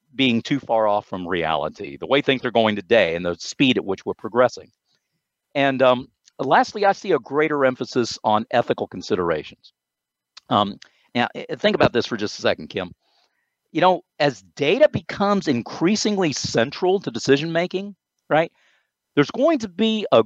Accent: American